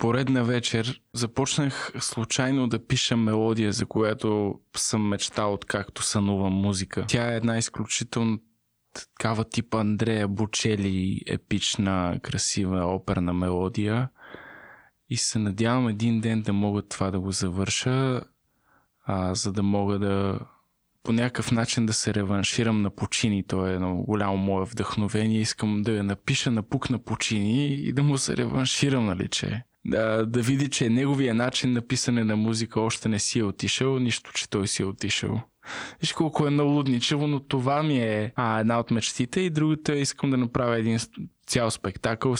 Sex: male